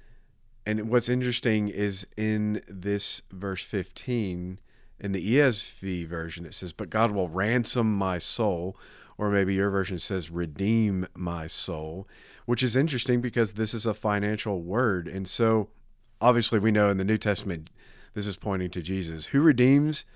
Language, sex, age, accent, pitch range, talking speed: English, male, 40-59, American, 90-115 Hz, 160 wpm